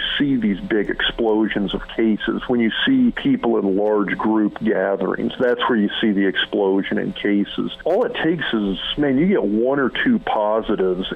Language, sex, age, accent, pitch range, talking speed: English, male, 50-69, American, 100-125 Hz, 175 wpm